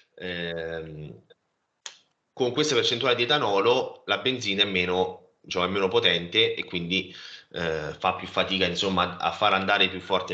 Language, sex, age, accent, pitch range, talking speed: Italian, male, 30-49, native, 90-110 Hz, 155 wpm